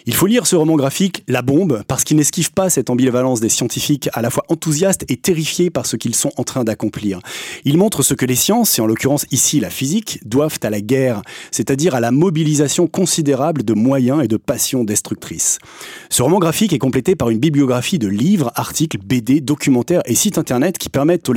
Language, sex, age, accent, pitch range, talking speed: French, male, 30-49, French, 120-160 Hz, 210 wpm